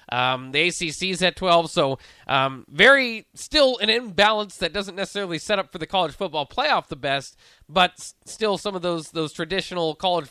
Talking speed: 190 wpm